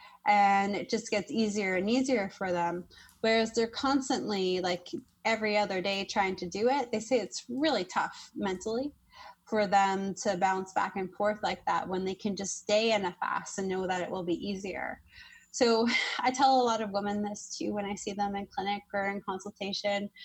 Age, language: 20-39, English